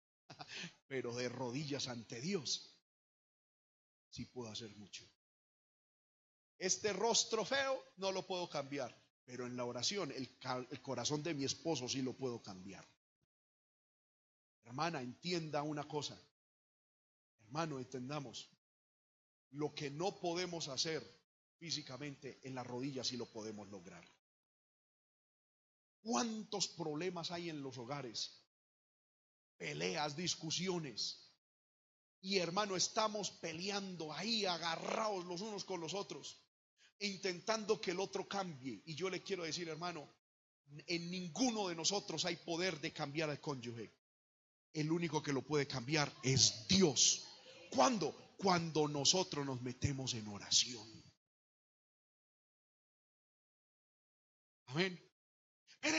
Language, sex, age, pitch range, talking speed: Spanish, male, 40-59, 125-185 Hz, 115 wpm